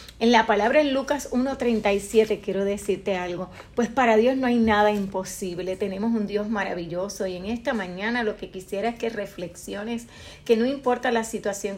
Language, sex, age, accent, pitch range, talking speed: Spanish, female, 40-59, American, 205-250 Hz, 180 wpm